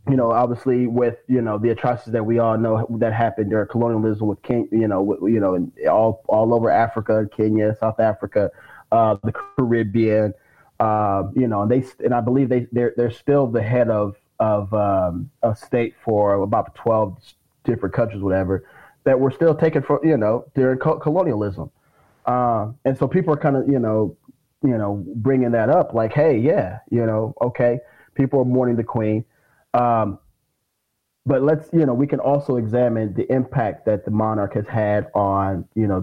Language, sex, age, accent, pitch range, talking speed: English, male, 30-49, American, 110-130 Hz, 185 wpm